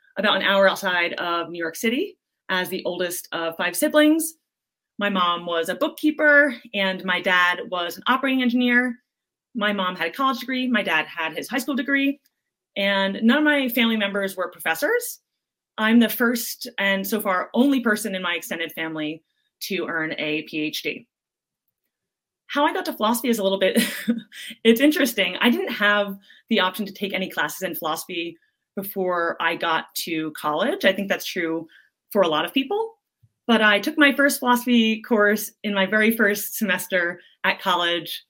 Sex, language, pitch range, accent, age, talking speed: female, English, 175-245 Hz, American, 30-49, 175 wpm